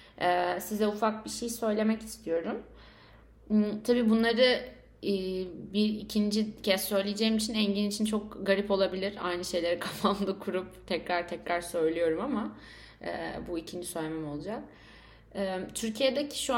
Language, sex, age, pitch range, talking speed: Turkish, female, 30-49, 180-220 Hz, 115 wpm